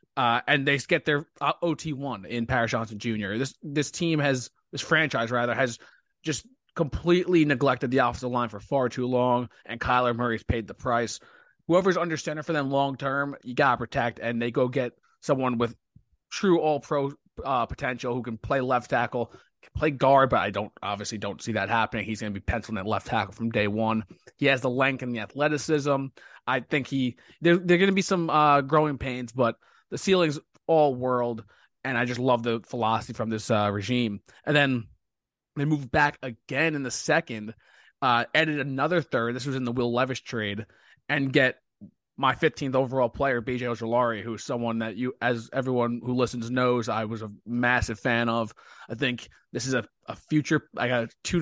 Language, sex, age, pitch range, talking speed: English, male, 20-39, 115-140 Hz, 200 wpm